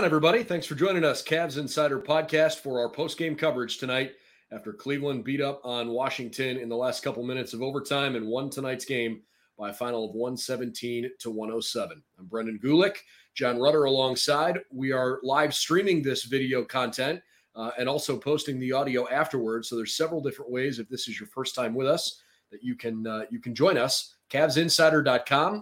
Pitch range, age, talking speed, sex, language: 120-145 Hz, 30-49, 180 wpm, male, English